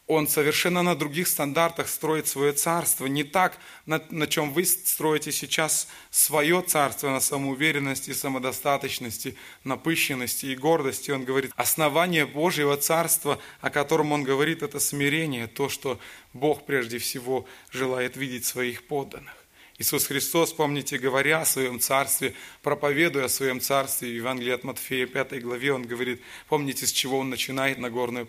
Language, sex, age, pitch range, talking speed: Russian, male, 20-39, 125-150 Hz, 145 wpm